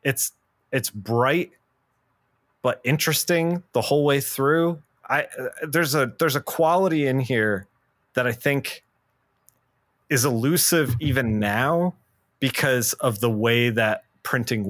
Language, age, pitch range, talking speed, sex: English, 30-49, 115-150 Hz, 125 wpm, male